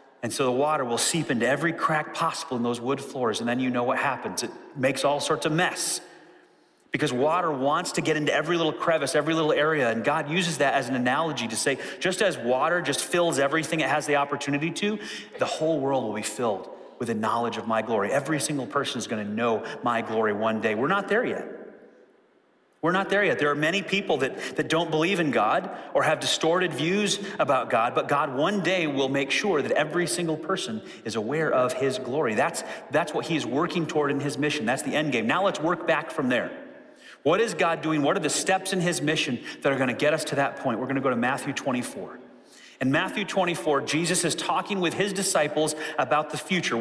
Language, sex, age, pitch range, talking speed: English, male, 30-49, 140-175 Hz, 225 wpm